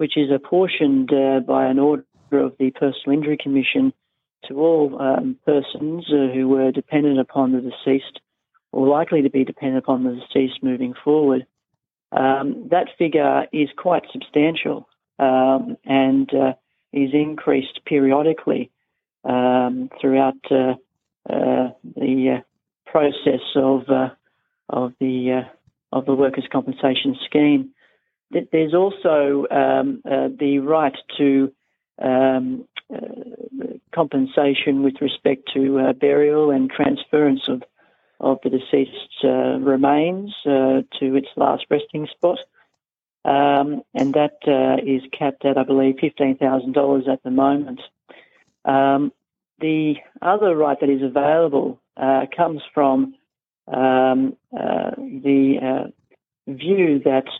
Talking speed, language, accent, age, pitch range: 125 wpm, English, Australian, 40-59, 135-150 Hz